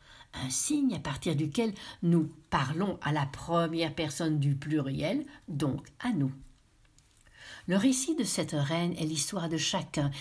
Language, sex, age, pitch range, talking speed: French, female, 60-79, 140-200 Hz, 145 wpm